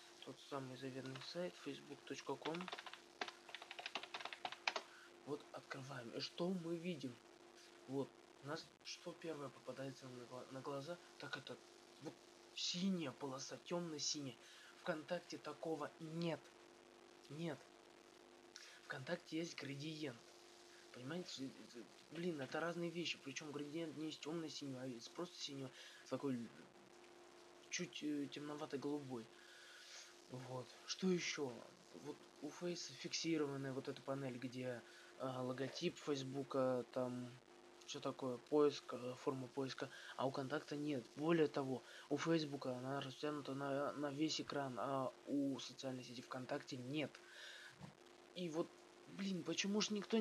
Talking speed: 115 wpm